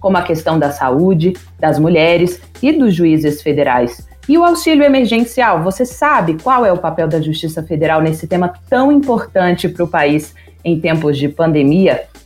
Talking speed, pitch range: 170 wpm, 160-225 Hz